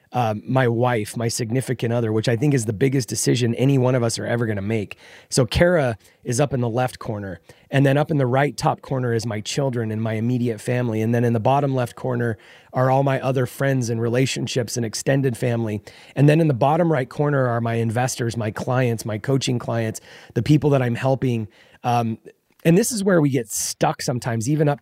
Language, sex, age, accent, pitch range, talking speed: English, male, 30-49, American, 115-145 Hz, 225 wpm